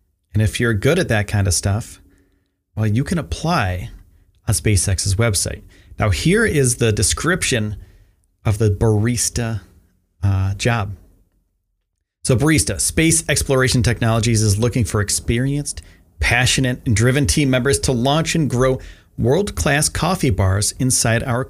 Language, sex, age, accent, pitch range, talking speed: English, male, 40-59, American, 95-130 Hz, 135 wpm